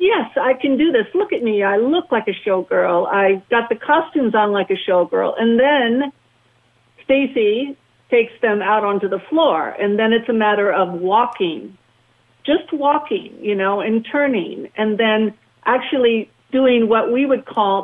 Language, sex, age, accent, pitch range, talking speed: English, female, 50-69, American, 195-255 Hz, 170 wpm